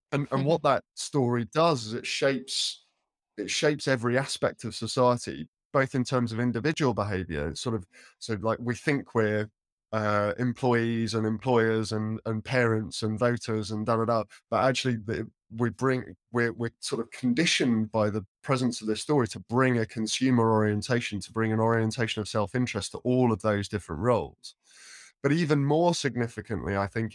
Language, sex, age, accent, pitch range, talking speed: English, male, 20-39, British, 105-125 Hz, 175 wpm